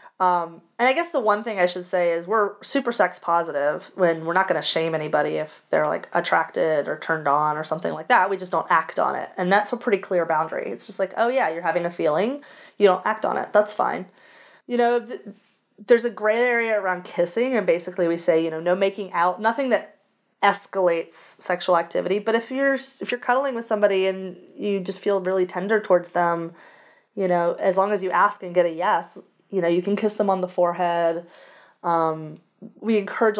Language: English